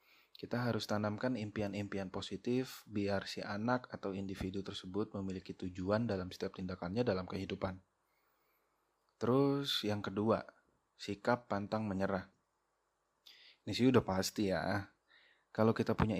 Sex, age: male, 20-39